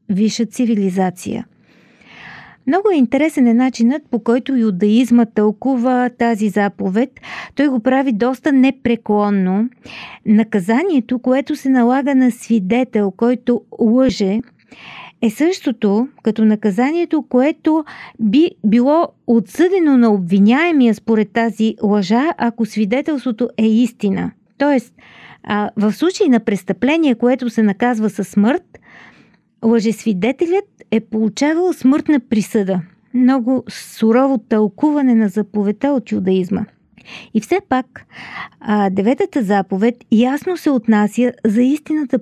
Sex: female